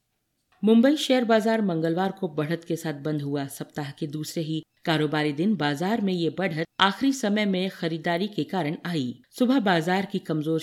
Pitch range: 160-210 Hz